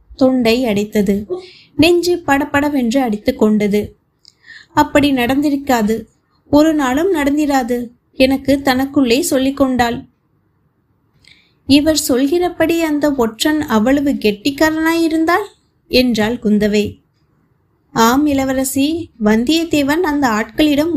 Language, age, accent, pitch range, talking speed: Tamil, 20-39, native, 250-325 Hz, 75 wpm